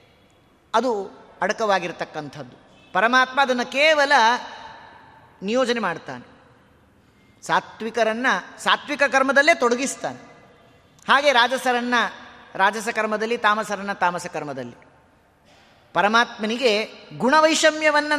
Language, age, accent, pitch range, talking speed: Kannada, 30-49, native, 215-280 Hz, 65 wpm